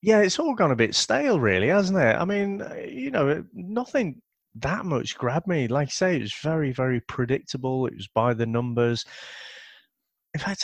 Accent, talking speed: British, 190 wpm